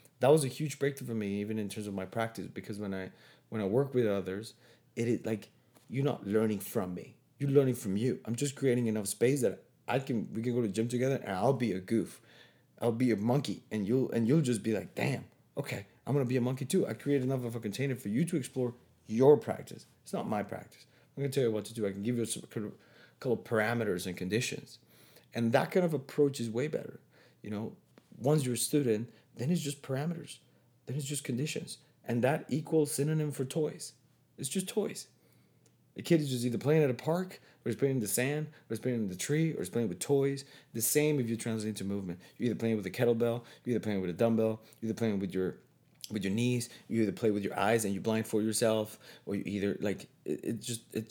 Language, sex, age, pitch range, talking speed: English, male, 30-49, 110-140 Hz, 245 wpm